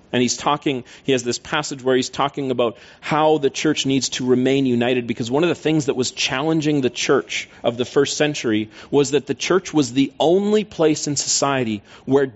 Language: English